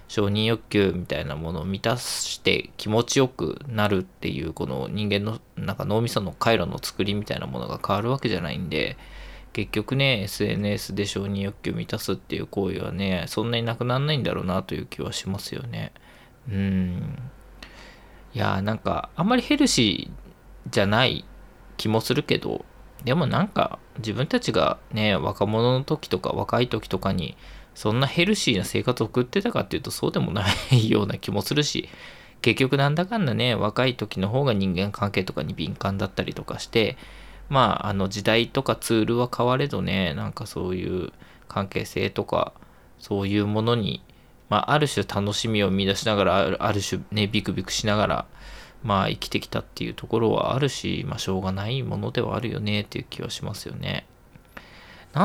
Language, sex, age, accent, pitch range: Japanese, male, 20-39, native, 100-120 Hz